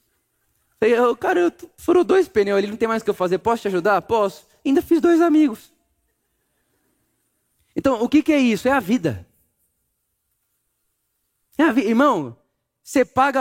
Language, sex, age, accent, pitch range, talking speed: Portuguese, male, 20-39, Brazilian, 205-275 Hz, 160 wpm